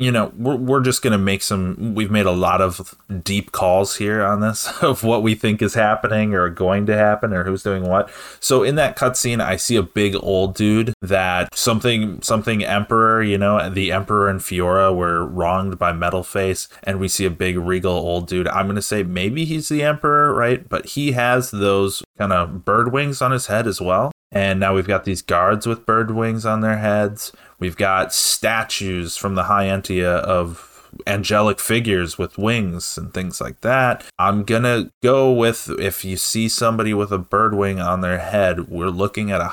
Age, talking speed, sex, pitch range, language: 20-39, 205 wpm, male, 95-115 Hz, English